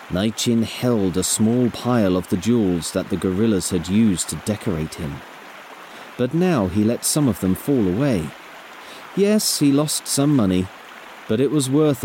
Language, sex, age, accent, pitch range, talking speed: English, male, 40-59, British, 100-160 Hz, 170 wpm